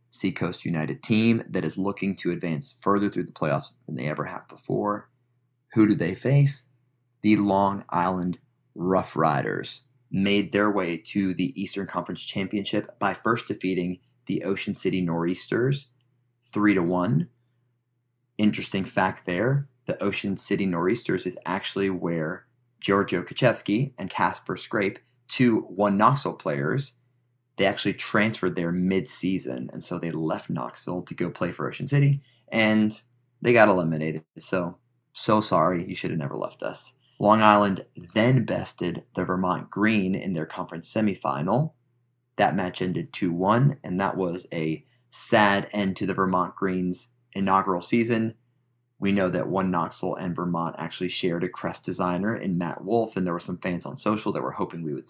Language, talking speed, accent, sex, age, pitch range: English, 155 wpm, American, male, 30-49, 90-120 Hz